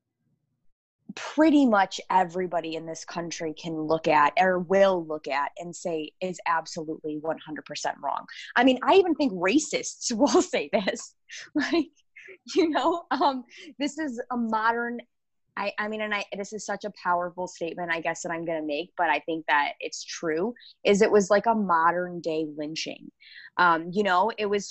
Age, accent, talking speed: 20-39, American, 180 wpm